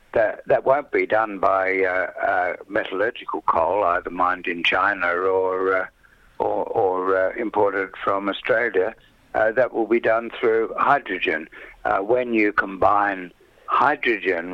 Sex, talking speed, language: male, 140 wpm, English